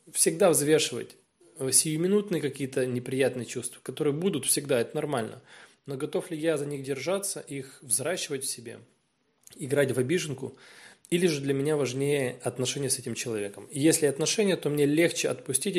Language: Russian